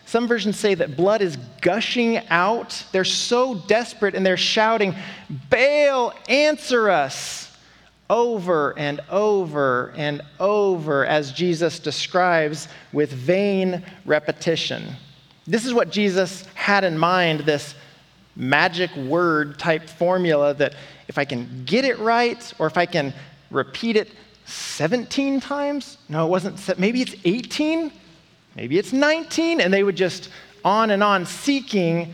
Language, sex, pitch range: English, male, 155-225 Hz